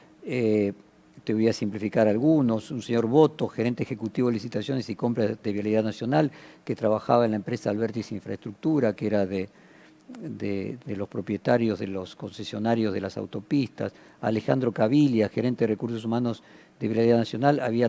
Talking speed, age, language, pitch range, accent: 160 wpm, 50-69, Spanish, 105-125 Hz, Argentinian